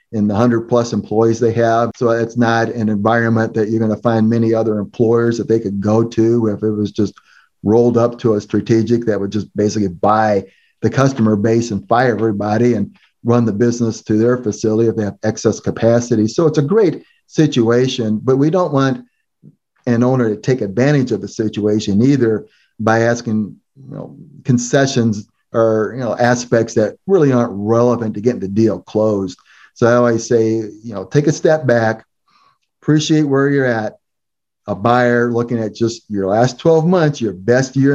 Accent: American